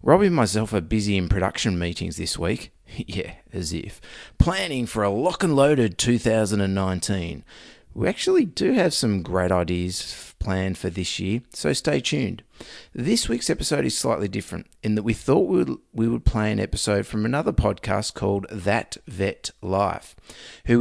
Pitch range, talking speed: 95-120 Hz, 165 wpm